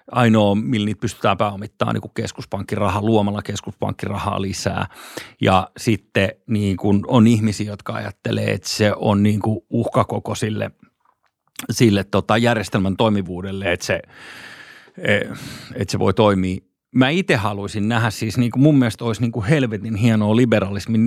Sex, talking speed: male, 135 wpm